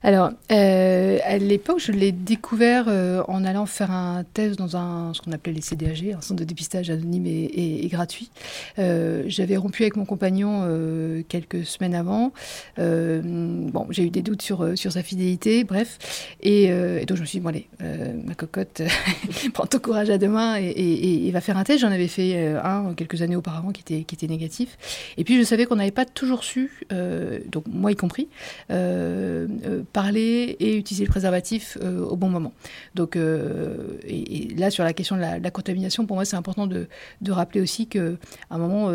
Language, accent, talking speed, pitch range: French, French, 210 wpm, 170-205 Hz